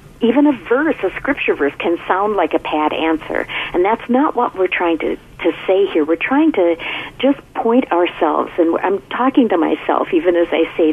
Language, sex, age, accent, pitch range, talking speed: English, female, 50-69, American, 160-225 Hz, 205 wpm